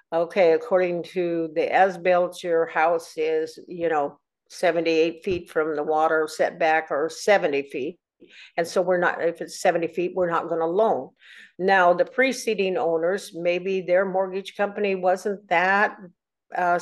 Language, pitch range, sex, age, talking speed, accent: English, 170-200 Hz, female, 50-69, 155 wpm, American